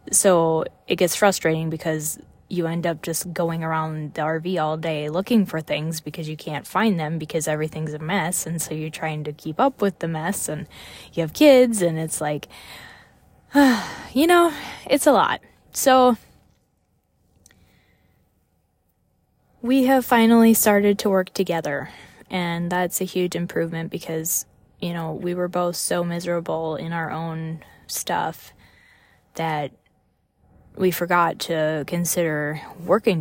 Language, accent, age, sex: English, American, 10-29, female